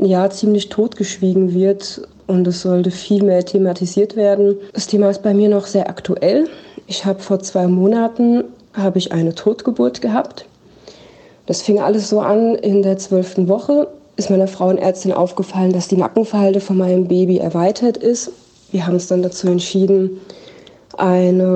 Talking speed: 155 wpm